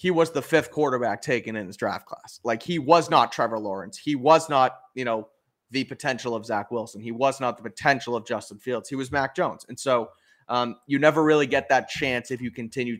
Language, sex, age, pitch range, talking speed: English, male, 30-49, 110-135 Hz, 230 wpm